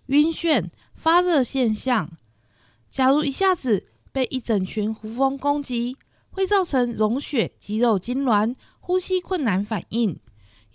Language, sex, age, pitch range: Chinese, female, 50-69, 220-295 Hz